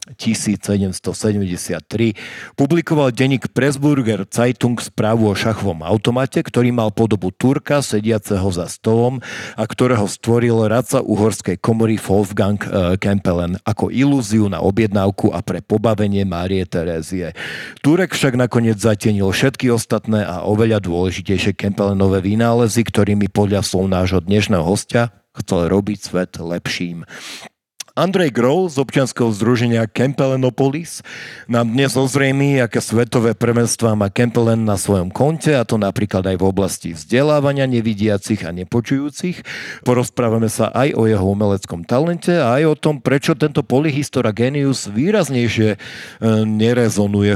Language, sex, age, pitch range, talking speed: Slovak, male, 50-69, 100-125 Hz, 125 wpm